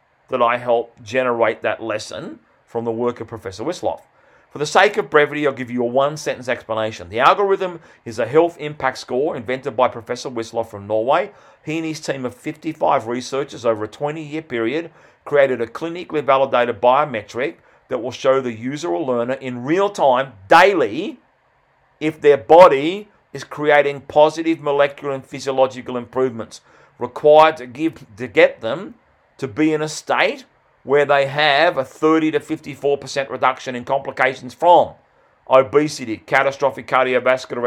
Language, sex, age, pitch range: English, male, 40-59, 120-150 Hz